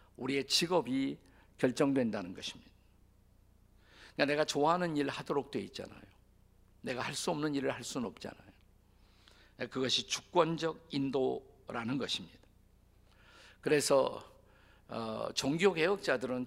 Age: 50-69